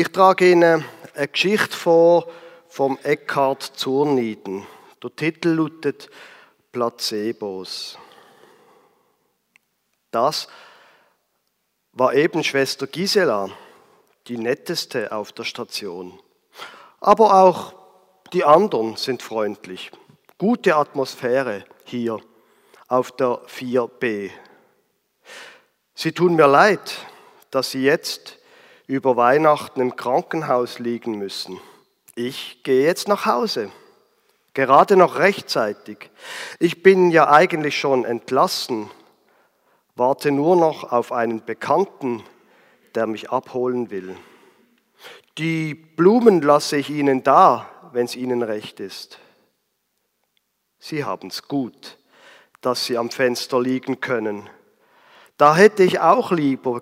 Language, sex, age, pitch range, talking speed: German, male, 50-69, 120-180 Hz, 105 wpm